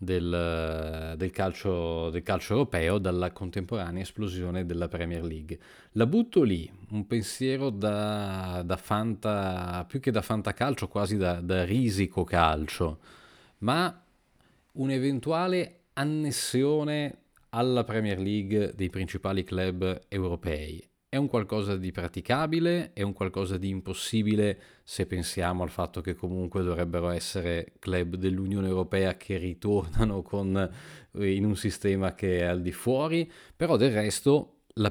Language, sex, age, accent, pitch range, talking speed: Italian, male, 30-49, native, 90-105 Hz, 130 wpm